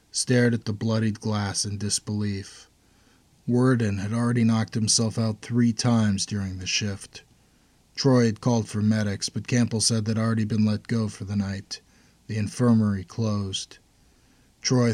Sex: male